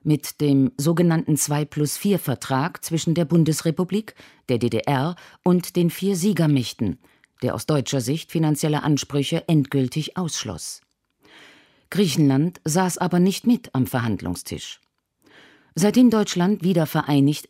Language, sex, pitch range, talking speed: German, female, 155-215 Hz, 110 wpm